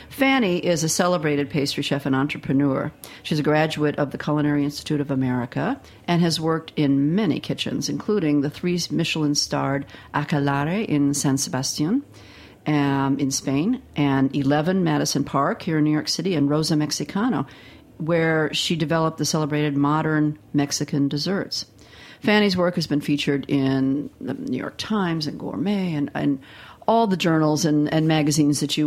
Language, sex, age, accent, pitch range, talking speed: English, female, 50-69, American, 140-180 Hz, 160 wpm